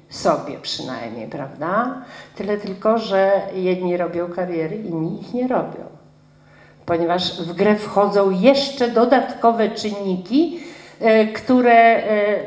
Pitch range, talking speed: 175-230 Hz, 100 wpm